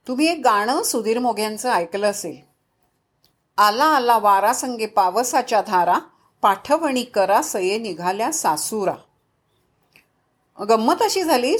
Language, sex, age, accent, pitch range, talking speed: Marathi, female, 50-69, native, 195-280 Hz, 105 wpm